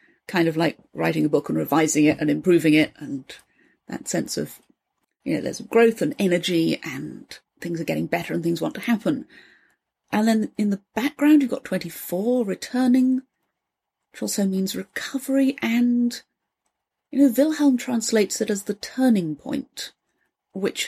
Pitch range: 175-245 Hz